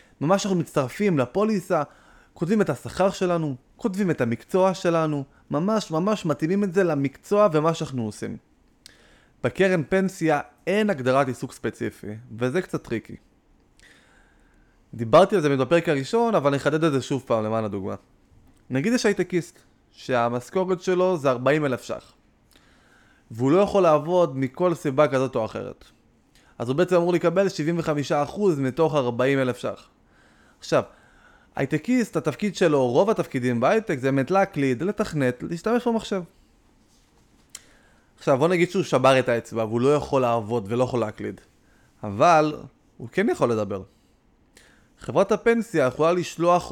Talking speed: 135 wpm